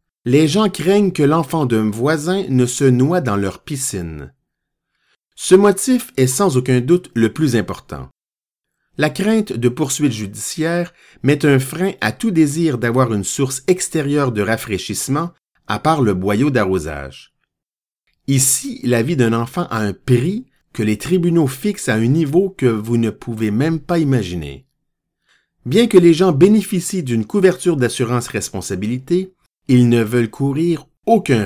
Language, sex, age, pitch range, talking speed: French, male, 50-69, 115-170 Hz, 150 wpm